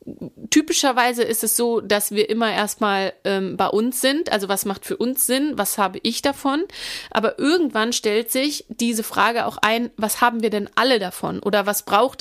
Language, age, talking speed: German, 30-49, 185 wpm